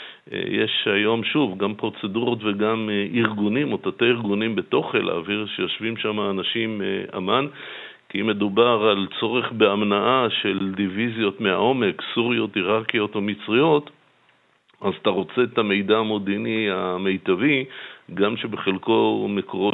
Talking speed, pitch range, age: 120 wpm, 95-115 Hz, 50-69